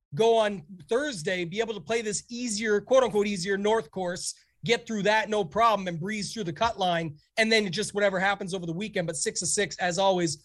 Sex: male